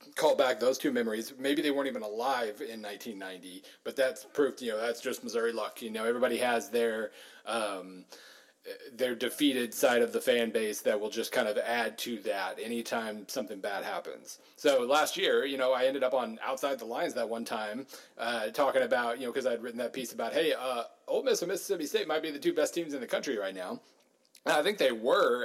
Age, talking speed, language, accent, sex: 30-49, 220 wpm, English, American, male